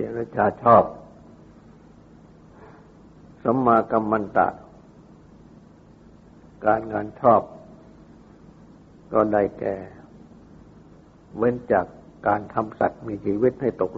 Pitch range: 85-115 Hz